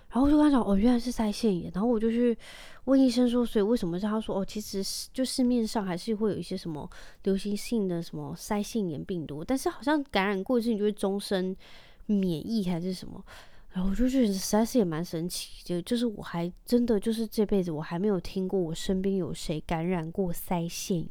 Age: 20-39